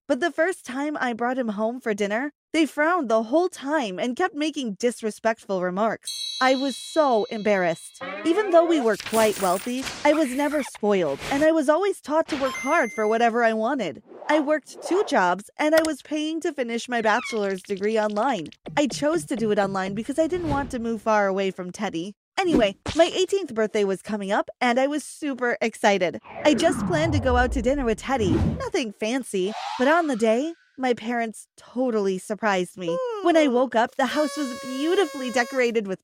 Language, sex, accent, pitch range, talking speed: English, female, American, 215-310 Hz, 200 wpm